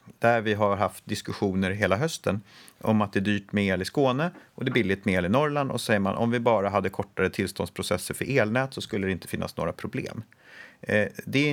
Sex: male